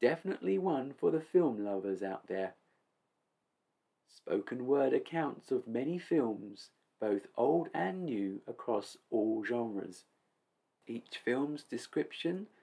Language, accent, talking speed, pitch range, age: English, British, 115 wpm, 105-160 Hz, 40-59